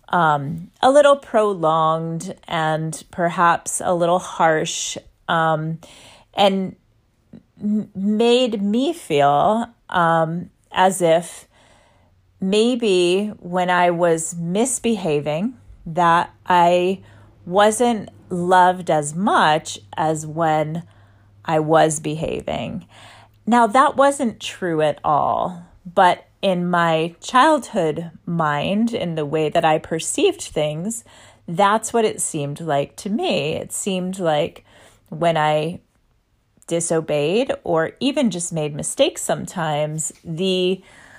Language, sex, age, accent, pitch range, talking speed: English, female, 30-49, American, 155-205 Hz, 105 wpm